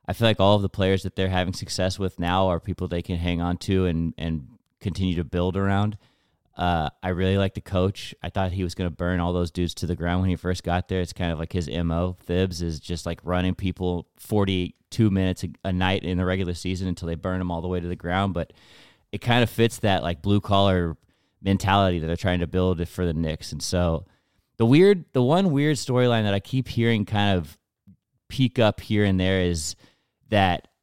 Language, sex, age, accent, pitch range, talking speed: English, male, 30-49, American, 90-110 Hz, 230 wpm